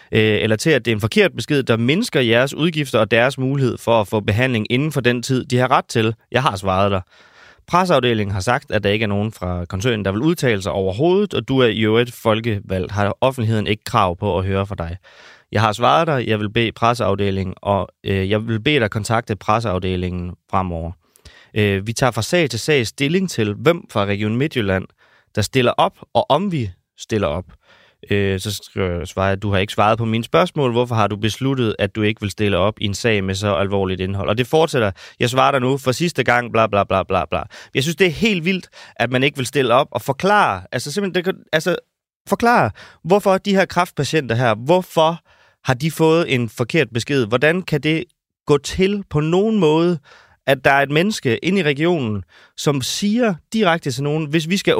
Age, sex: 30-49, male